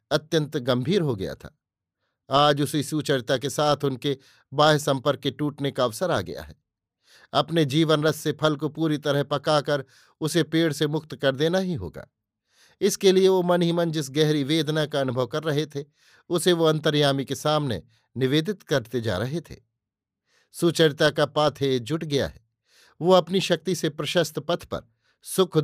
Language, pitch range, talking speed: Hindi, 145-170 Hz, 175 wpm